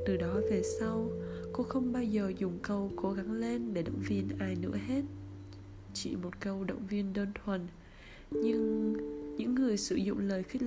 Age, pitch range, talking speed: 20-39, 170-230 Hz, 185 wpm